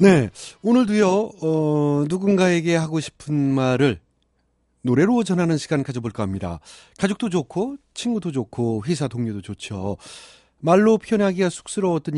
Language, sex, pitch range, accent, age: Korean, male, 110-180 Hz, native, 30-49